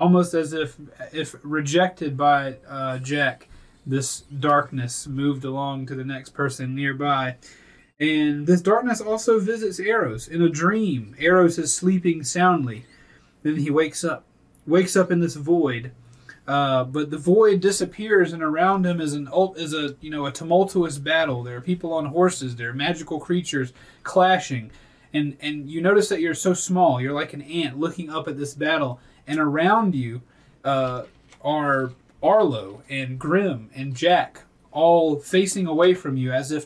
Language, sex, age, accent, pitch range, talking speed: English, male, 30-49, American, 135-170 Hz, 165 wpm